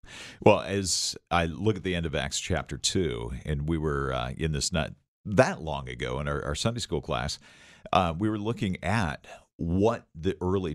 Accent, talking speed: American, 195 wpm